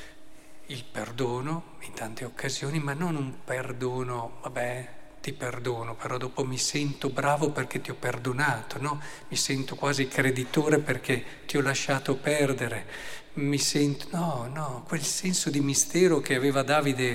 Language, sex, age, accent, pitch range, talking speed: Italian, male, 50-69, native, 125-150 Hz, 145 wpm